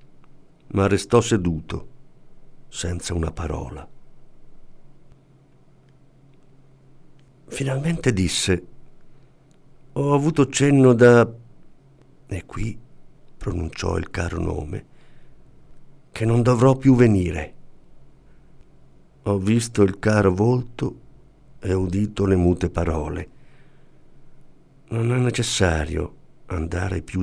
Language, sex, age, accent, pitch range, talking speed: Italian, male, 50-69, native, 90-135 Hz, 85 wpm